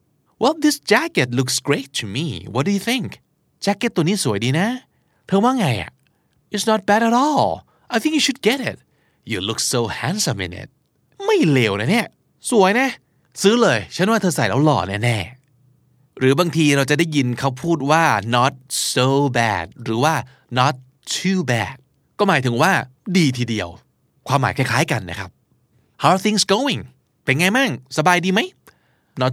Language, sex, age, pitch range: Thai, male, 30-49, 125-185 Hz